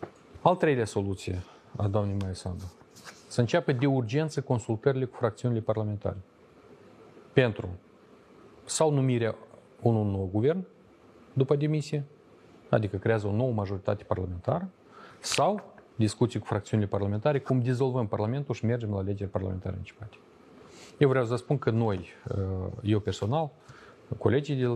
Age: 30-49